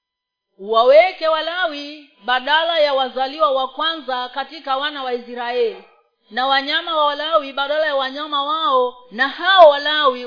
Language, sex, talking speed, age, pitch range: Swahili, female, 130 wpm, 40-59, 255-320 Hz